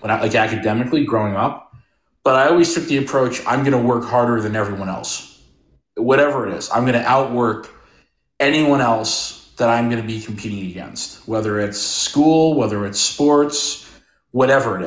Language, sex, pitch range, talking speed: English, male, 110-135 Hz, 170 wpm